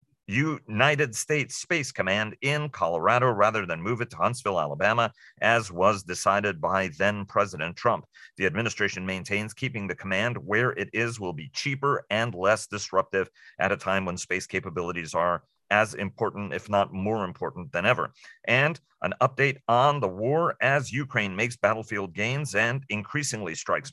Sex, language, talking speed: male, English, 160 wpm